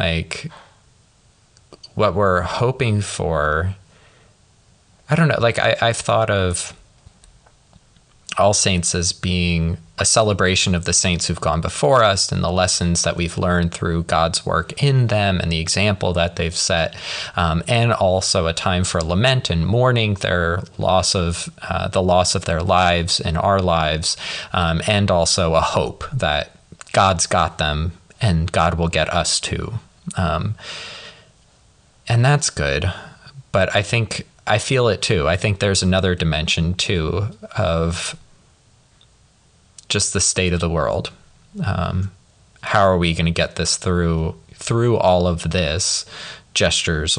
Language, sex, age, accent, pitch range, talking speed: English, male, 20-39, American, 85-105 Hz, 150 wpm